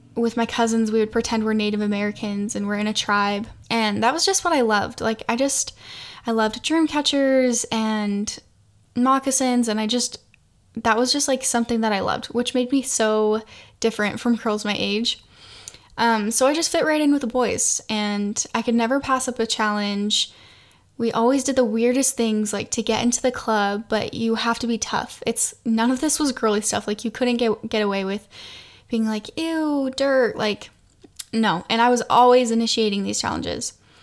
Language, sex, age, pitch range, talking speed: English, female, 10-29, 210-245 Hz, 200 wpm